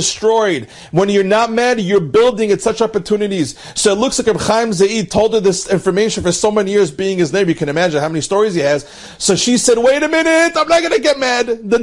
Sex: male